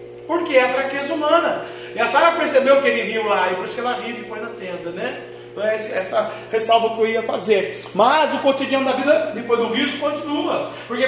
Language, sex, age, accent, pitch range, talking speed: Portuguese, male, 40-59, Brazilian, 175-255 Hz, 210 wpm